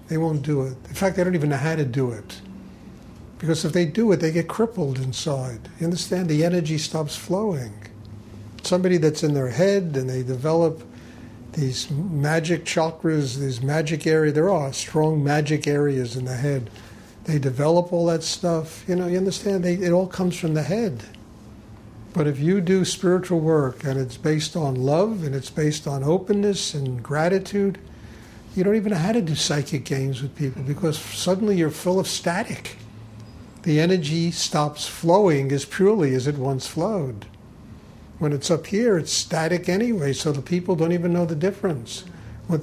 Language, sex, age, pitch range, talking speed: English, male, 50-69, 130-175 Hz, 180 wpm